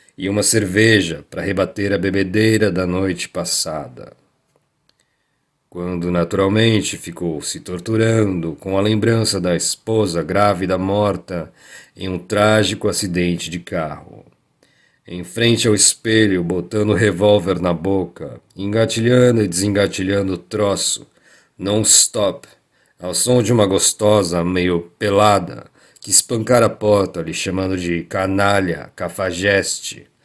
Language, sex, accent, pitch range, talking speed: Portuguese, male, Brazilian, 90-110 Hz, 115 wpm